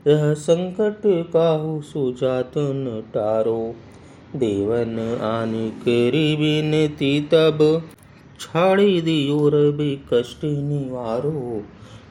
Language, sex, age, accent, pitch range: Hindi, male, 30-49, native, 115-150 Hz